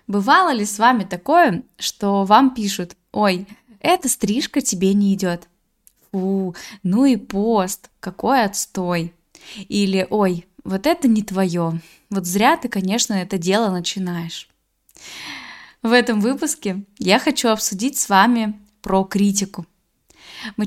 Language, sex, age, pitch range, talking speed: Russian, female, 10-29, 195-245 Hz, 130 wpm